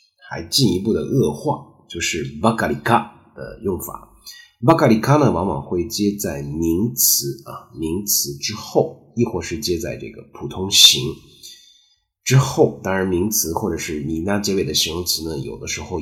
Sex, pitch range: male, 85-120 Hz